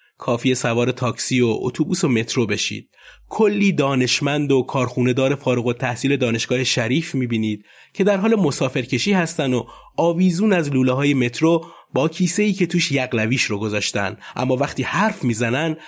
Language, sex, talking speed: Persian, male, 155 wpm